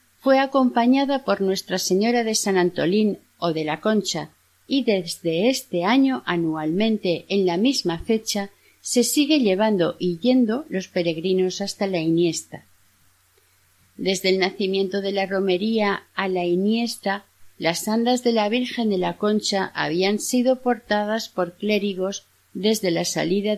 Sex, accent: female, Spanish